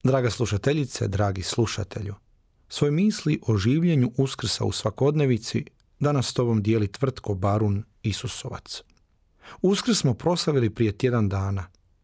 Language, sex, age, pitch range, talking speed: Croatian, male, 40-59, 105-135 Hz, 115 wpm